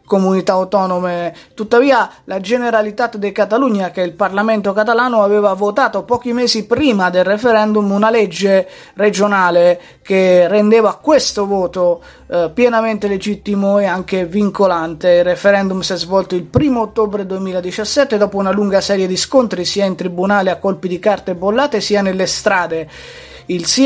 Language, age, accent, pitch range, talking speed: Italian, 20-39, native, 185-215 Hz, 150 wpm